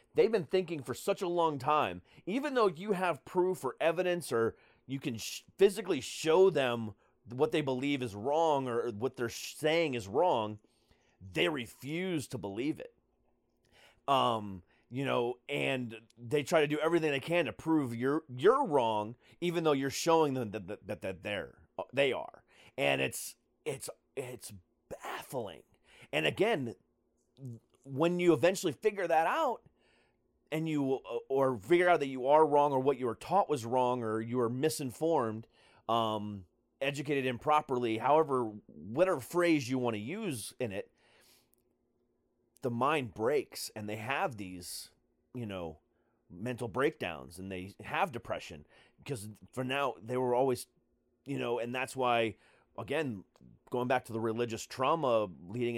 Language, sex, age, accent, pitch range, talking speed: English, male, 30-49, American, 115-155 Hz, 155 wpm